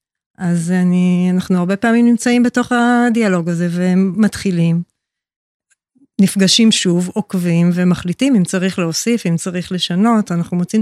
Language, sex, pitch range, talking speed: Hebrew, female, 175-205 Hz, 120 wpm